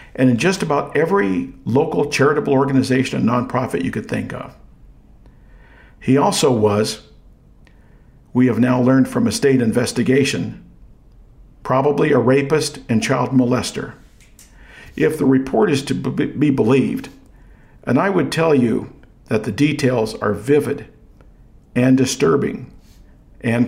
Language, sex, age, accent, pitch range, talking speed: English, male, 50-69, American, 120-145 Hz, 130 wpm